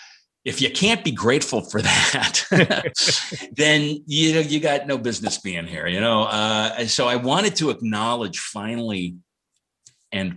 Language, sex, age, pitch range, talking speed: English, male, 50-69, 95-125 Hz, 150 wpm